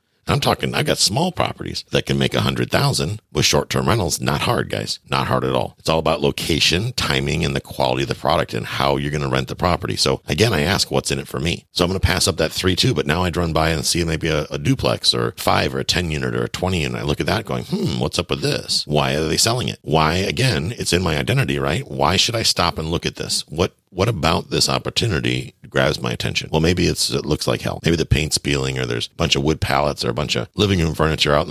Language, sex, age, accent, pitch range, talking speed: English, male, 50-69, American, 65-85 Hz, 275 wpm